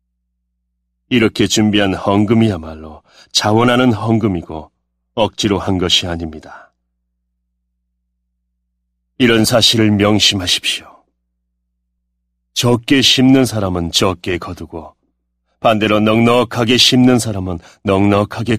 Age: 40-59